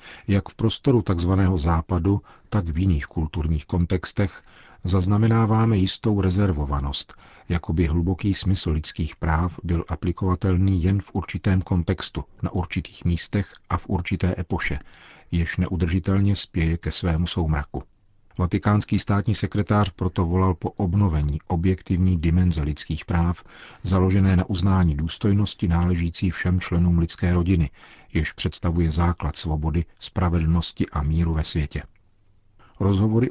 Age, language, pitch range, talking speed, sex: 40-59, Czech, 85-95 Hz, 125 wpm, male